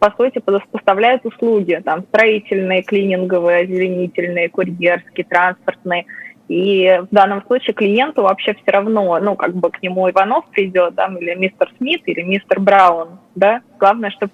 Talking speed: 145 wpm